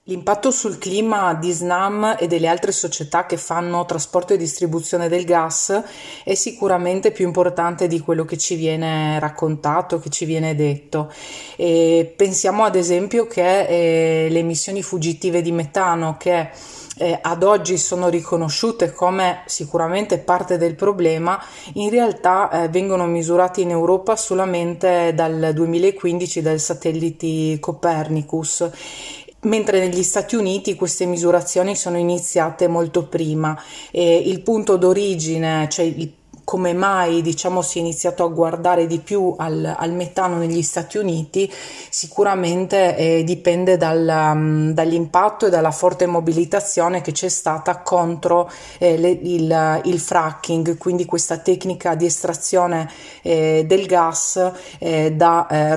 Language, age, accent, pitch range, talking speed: Italian, 20-39, native, 165-185 Hz, 135 wpm